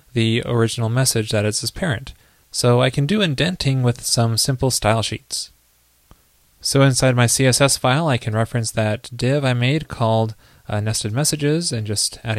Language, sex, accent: English, male, American